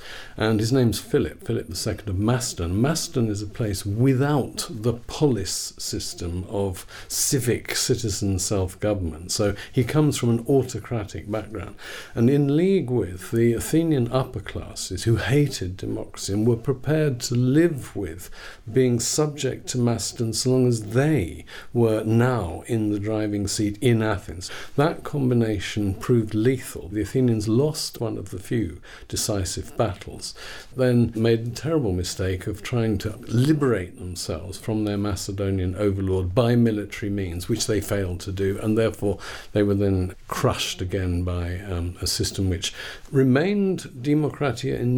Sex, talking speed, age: male, 150 wpm, 50-69